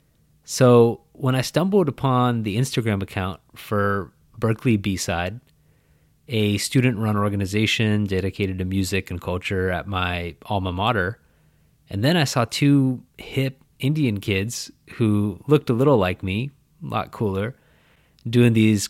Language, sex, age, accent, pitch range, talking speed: English, male, 30-49, American, 100-130 Hz, 135 wpm